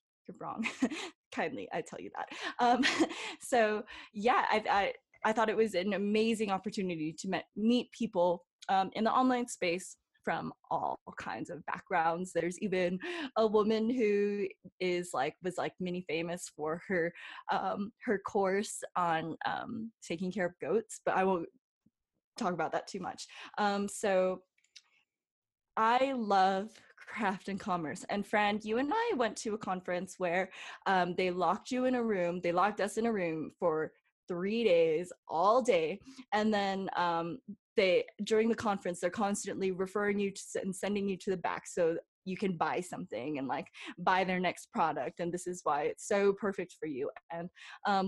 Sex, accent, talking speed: female, American, 170 wpm